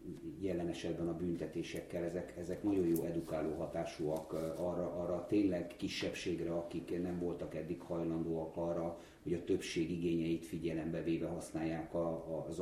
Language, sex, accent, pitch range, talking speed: English, male, Finnish, 85-95 Hz, 130 wpm